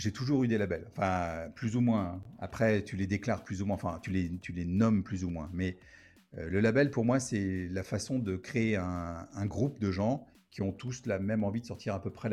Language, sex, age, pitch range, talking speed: French, male, 50-69, 90-115 Hz, 255 wpm